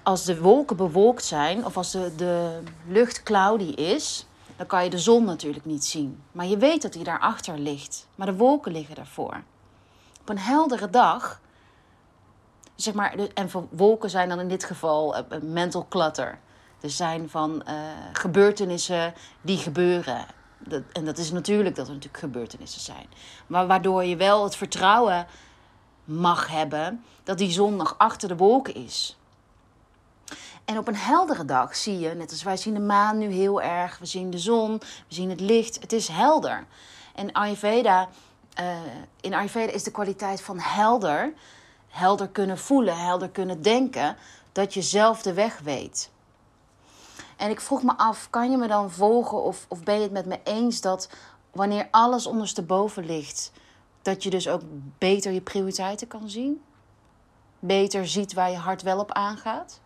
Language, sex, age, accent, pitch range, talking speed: Dutch, female, 30-49, Dutch, 175-210 Hz, 170 wpm